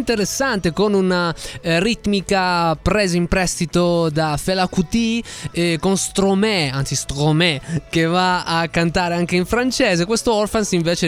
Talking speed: 140 wpm